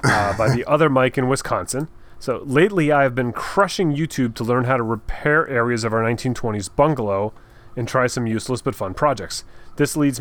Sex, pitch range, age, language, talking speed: male, 115-145 Hz, 30-49, English, 195 wpm